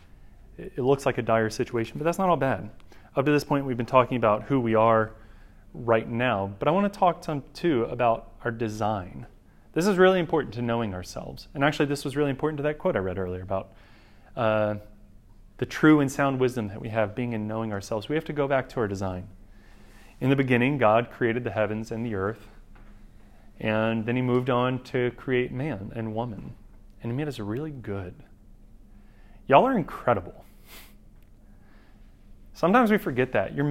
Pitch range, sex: 105-145 Hz, male